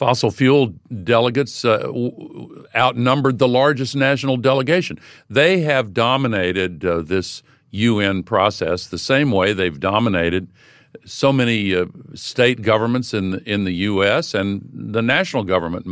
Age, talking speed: 60-79, 130 wpm